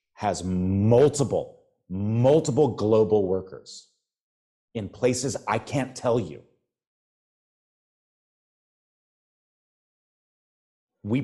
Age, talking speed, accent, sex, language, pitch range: 30-49, 65 wpm, American, male, English, 90-120 Hz